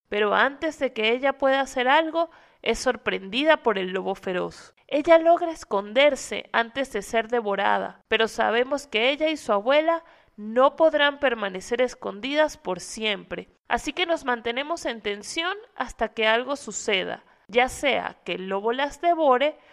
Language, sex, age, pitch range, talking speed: Spanish, female, 30-49, 215-300 Hz, 155 wpm